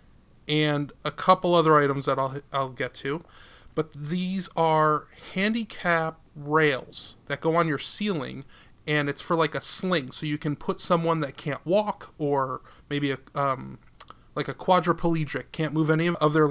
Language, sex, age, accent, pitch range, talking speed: English, male, 30-49, American, 140-170 Hz, 165 wpm